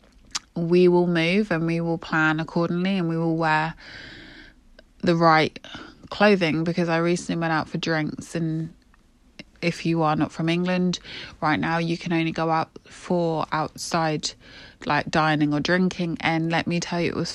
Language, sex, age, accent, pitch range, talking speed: English, female, 20-39, British, 165-185 Hz, 170 wpm